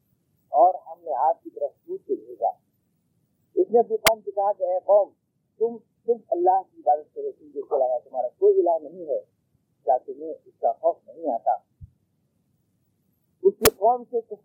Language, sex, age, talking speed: Urdu, male, 40-59, 50 wpm